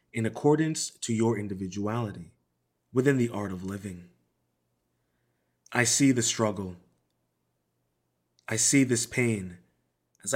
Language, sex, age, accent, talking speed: English, male, 30-49, American, 110 wpm